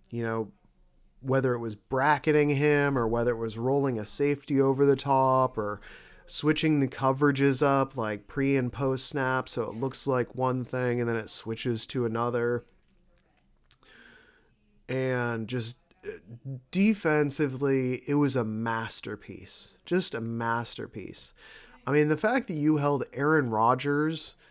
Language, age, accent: English, 30-49, American